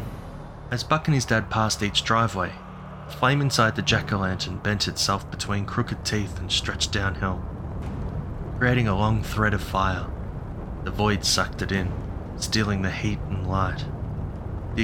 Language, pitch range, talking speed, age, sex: English, 95-110 Hz, 155 wpm, 20-39, male